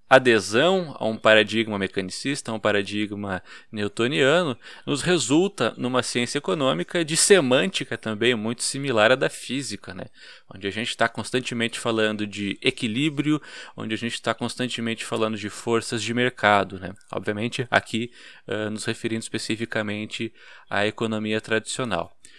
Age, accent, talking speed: 20-39, Brazilian, 135 wpm